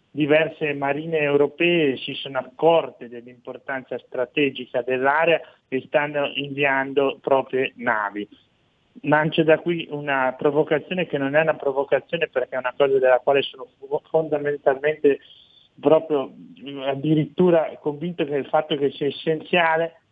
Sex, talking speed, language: male, 125 wpm, Italian